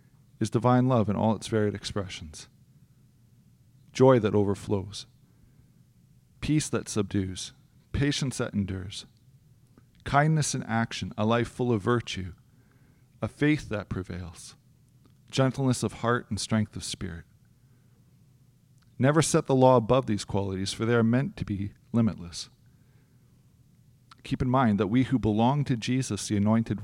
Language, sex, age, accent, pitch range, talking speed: English, male, 40-59, American, 100-130 Hz, 135 wpm